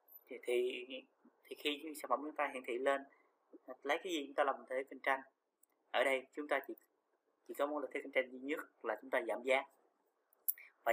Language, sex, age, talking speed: Vietnamese, male, 20-39, 210 wpm